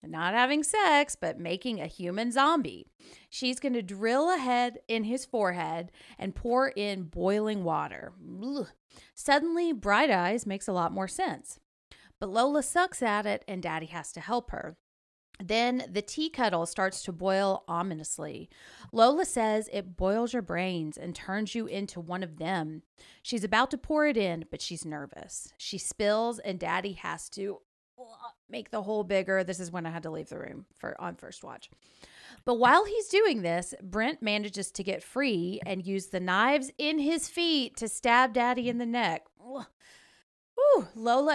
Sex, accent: female, American